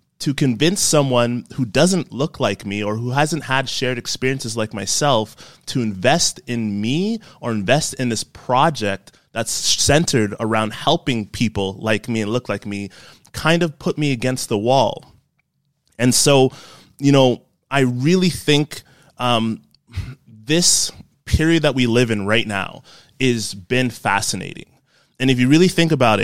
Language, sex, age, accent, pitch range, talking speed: English, male, 20-39, American, 110-140 Hz, 155 wpm